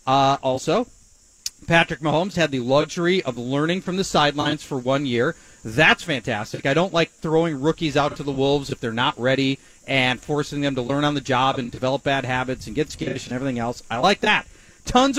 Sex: male